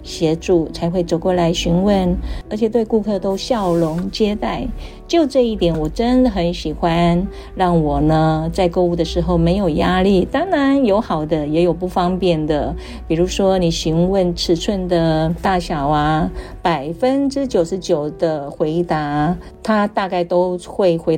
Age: 50-69